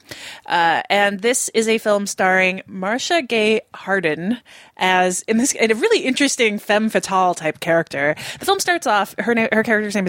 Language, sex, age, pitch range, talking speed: English, female, 20-39, 175-220 Hz, 180 wpm